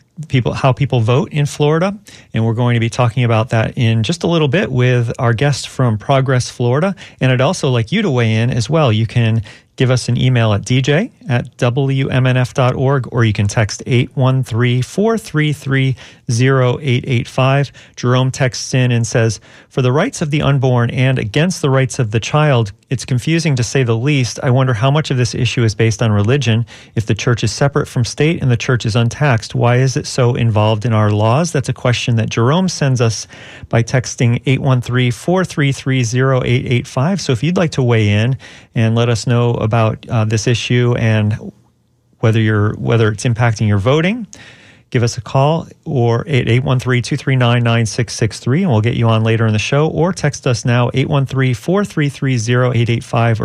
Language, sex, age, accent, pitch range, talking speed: English, male, 40-59, American, 115-135 Hz, 180 wpm